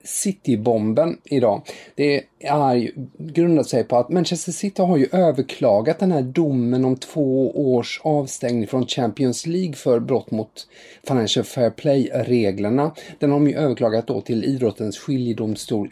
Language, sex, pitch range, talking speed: English, male, 120-165 Hz, 145 wpm